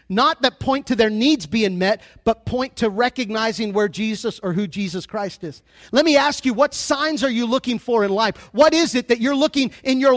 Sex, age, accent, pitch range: male, 40-59, American, 250-310 Hz